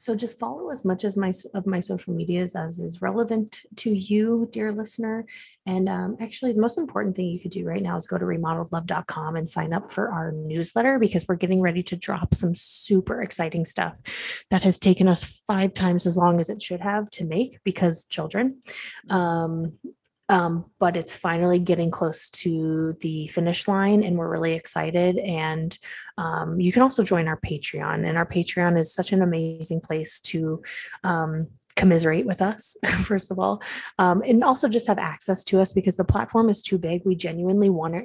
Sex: female